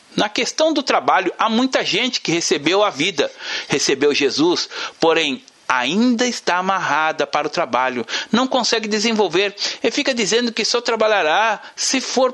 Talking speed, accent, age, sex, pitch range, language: 150 wpm, Brazilian, 60-79, male, 180-255 Hz, Portuguese